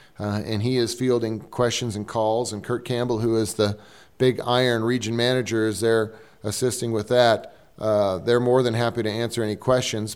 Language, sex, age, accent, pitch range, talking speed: English, male, 40-59, American, 115-135 Hz, 190 wpm